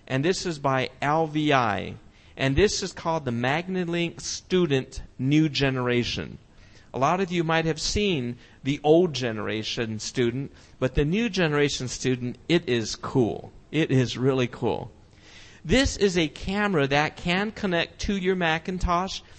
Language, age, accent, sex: English, 50-69, American, male